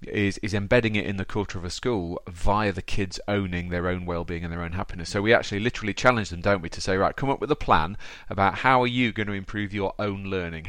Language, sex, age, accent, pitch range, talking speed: English, male, 30-49, British, 95-120 Hz, 265 wpm